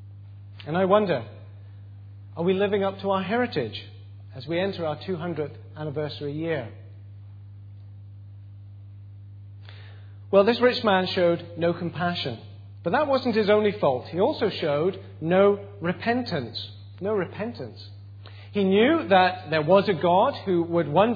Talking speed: 135 wpm